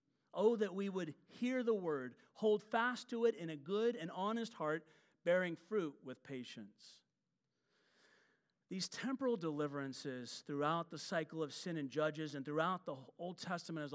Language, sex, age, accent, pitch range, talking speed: English, male, 40-59, American, 145-195 Hz, 160 wpm